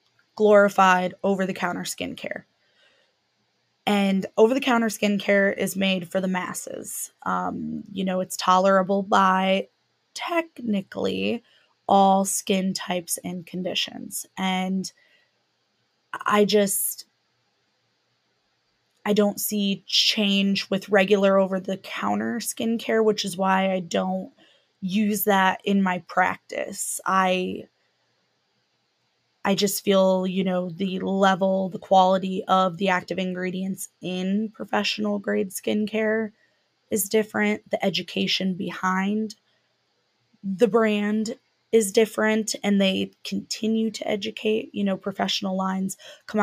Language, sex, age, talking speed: English, female, 20-39, 105 wpm